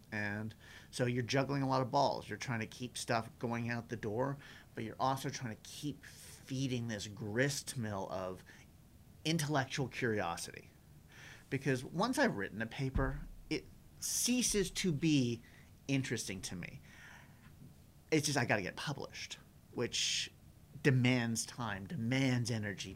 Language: English